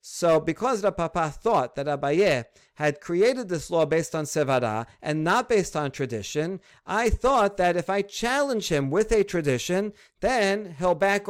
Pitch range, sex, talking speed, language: 145-180 Hz, male, 170 wpm, English